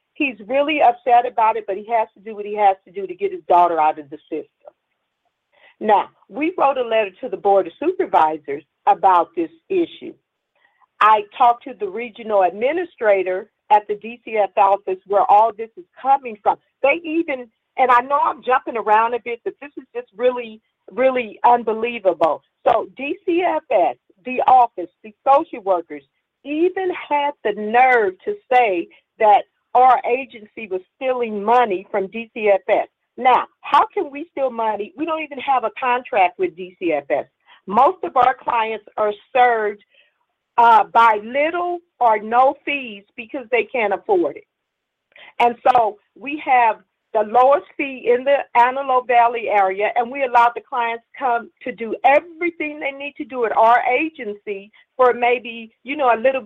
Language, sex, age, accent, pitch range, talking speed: English, female, 50-69, American, 220-310 Hz, 165 wpm